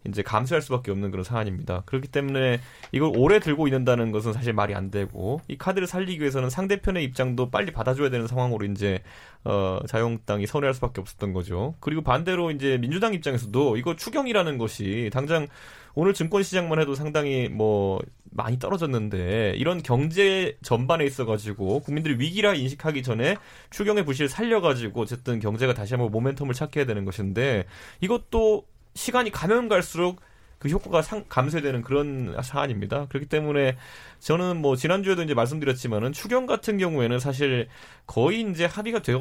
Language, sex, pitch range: Korean, male, 115-170 Hz